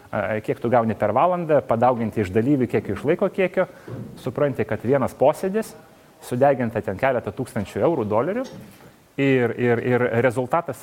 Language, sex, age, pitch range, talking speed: English, male, 30-49, 110-130 Hz, 145 wpm